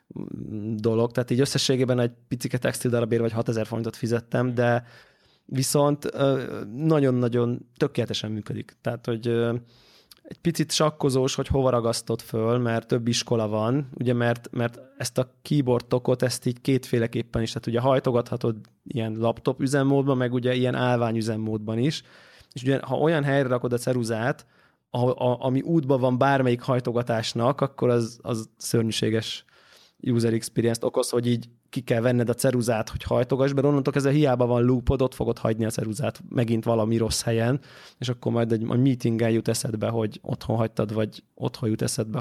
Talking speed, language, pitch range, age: 160 wpm, Hungarian, 115-130 Hz, 20-39